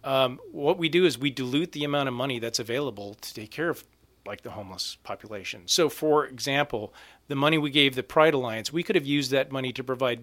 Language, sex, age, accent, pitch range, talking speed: English, male, 40-59, American, 120-140 Hz, 230 wpm